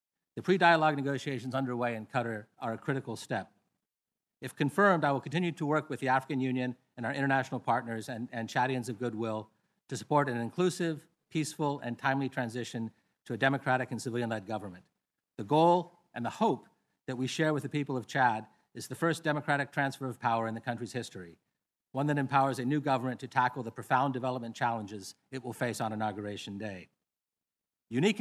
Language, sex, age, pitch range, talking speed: English, male, 50-69, 115-145 Hz, 185 wpm